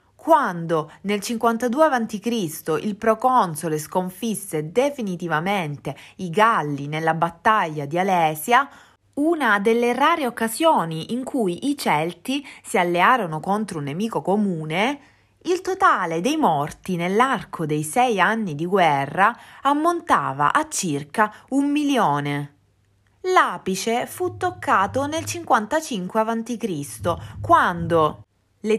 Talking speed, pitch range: 105 wpm, 165-250 Hz